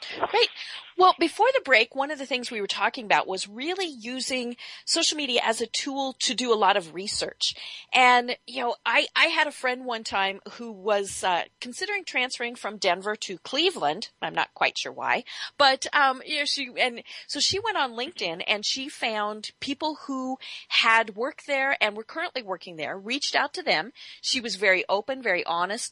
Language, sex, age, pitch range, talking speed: English, female, 40-59, 200-275 Hz, 200 wpm